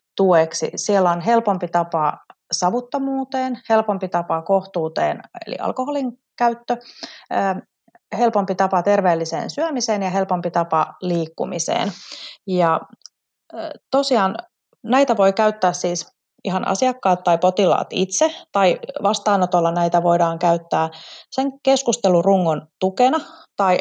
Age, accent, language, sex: 30-49, native, Finnish, female